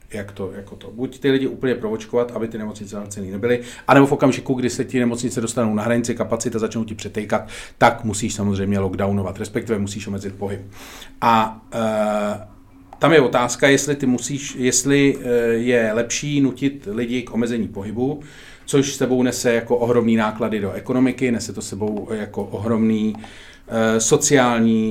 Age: 40-59